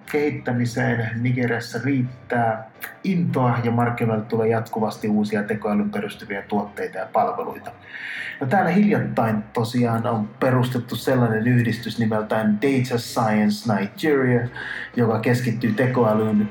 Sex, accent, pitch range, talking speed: male, native, 105-125 Hz, 105 wpm